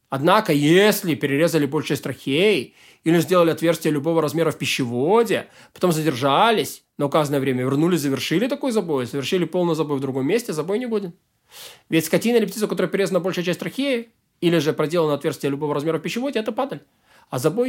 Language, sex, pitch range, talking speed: Russian, male, 155-210 Hz, 180 wpm